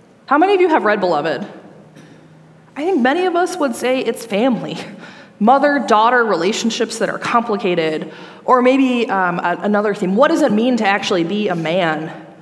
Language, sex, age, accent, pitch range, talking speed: English, female, 20-39, American, 180-235 Hz, 175 wpm